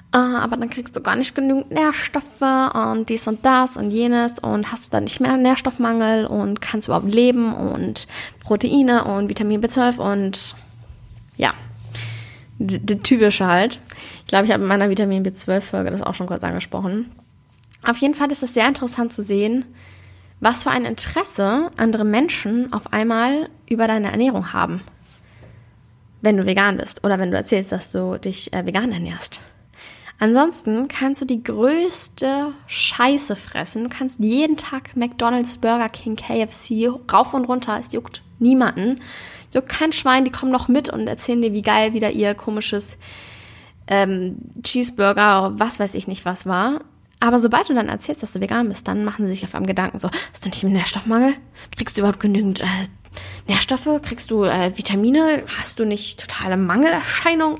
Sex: female